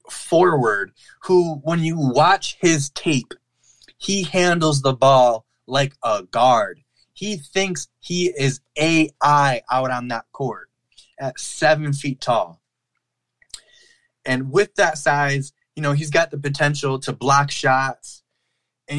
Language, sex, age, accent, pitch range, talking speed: English, male, 20-39, American, 135-160 Hz, 130 wpm